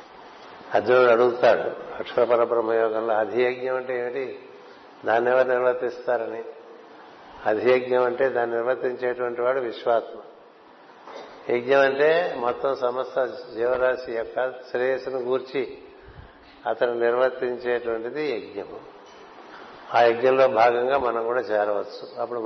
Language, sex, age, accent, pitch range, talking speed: Telugu, male, 60-79, native, 120-140 Hz, 90 wpm